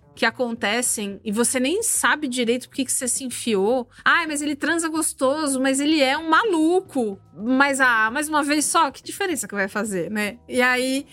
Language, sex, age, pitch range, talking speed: Portuguese, female, 20-39, 225-300 Hz, 195 wpm